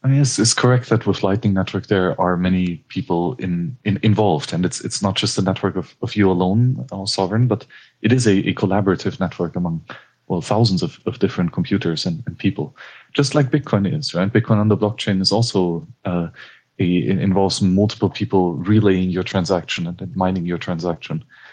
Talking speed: 190 wpm